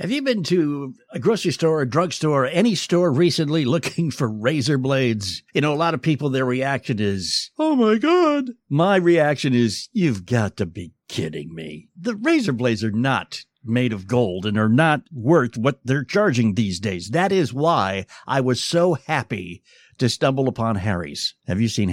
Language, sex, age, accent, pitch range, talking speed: English, male, 60-79, American, 120-175 Hz, 185 wpm